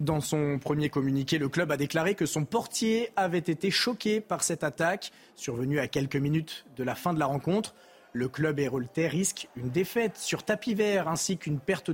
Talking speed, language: 195 wpm, French